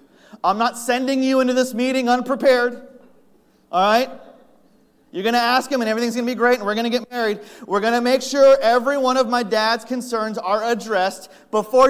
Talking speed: 205 wpm